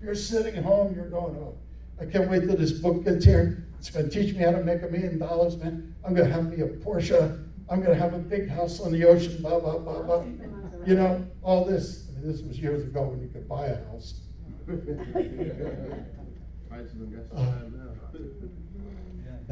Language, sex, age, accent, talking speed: English, male, 60-79, American, 195 wpm